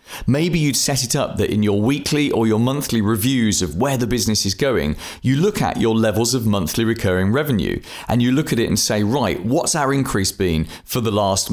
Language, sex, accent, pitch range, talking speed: English, male, British, 100-135 Hz, 225 wpm